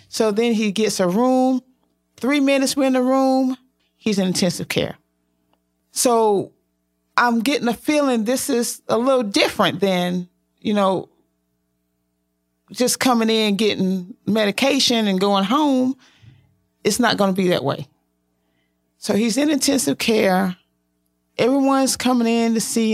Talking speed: 140 wpm